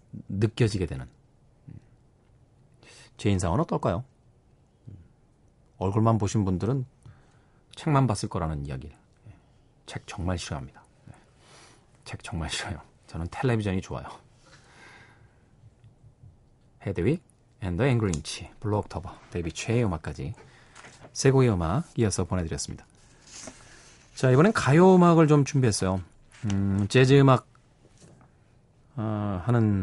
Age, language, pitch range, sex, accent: 40-59, Korean, 100-135 Hz, male, native